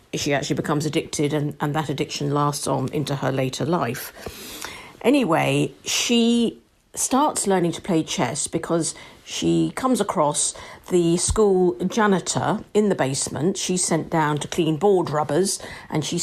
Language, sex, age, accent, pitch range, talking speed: English, female, 50-69, British, 145-175 Hz, 150 wpm